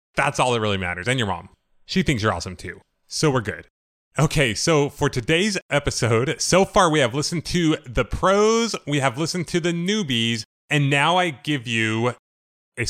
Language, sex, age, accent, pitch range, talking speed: English, male, 30-49, American, 115-145 Hz, 190 wpm